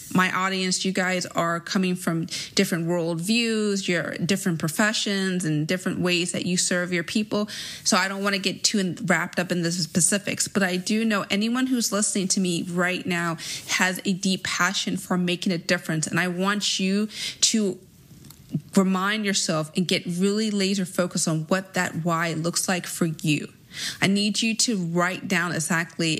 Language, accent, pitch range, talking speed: English, American, 180-210 Hz, 180 wpm